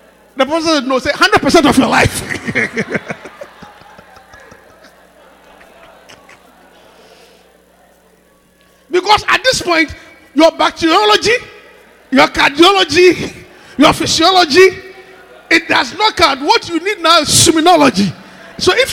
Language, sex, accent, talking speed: English, male, Nigerian, 100 wpm